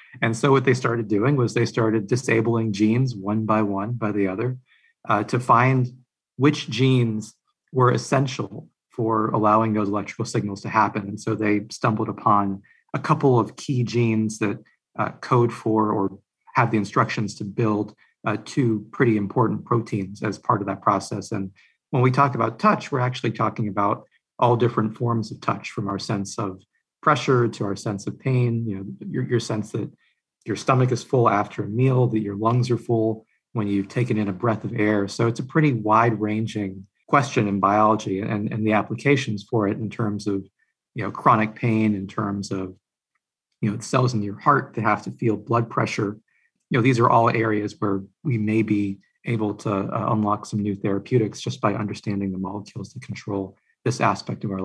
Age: 40-59